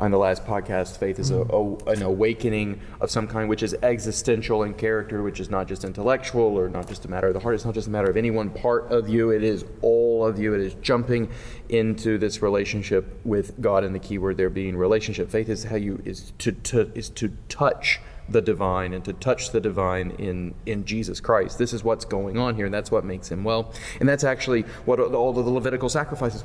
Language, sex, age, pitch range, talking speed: English, male, 30-49, 100-115 Hz, 235 wpm